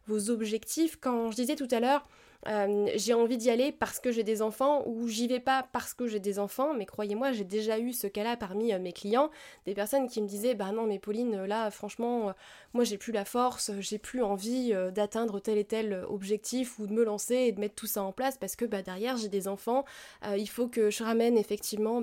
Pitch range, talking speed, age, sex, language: 210-260 Hz, 240 wpm, 20-39, female, French